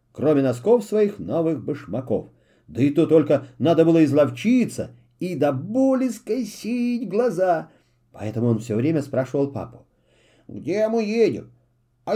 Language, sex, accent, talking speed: Russian, male, native, 135 wpm